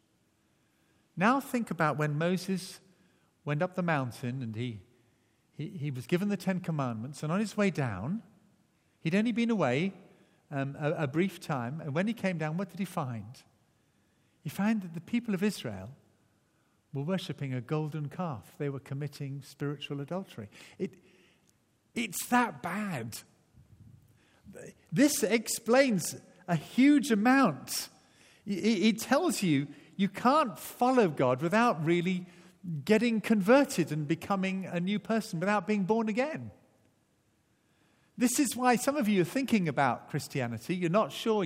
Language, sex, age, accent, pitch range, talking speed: English, male, 50-69, British, 150-225 Hz, 145 wpm